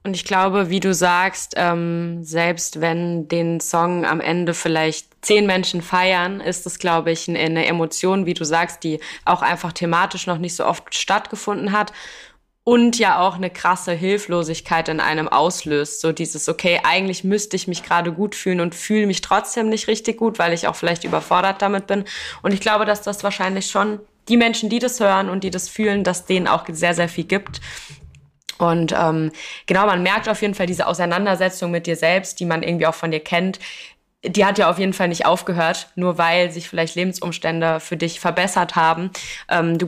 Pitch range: 170-200 Hz